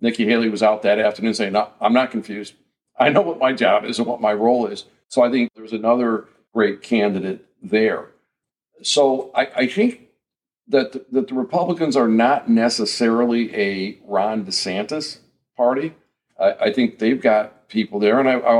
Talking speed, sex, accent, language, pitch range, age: 180 wpm, male, American, English, 110-140 Hz, 50-69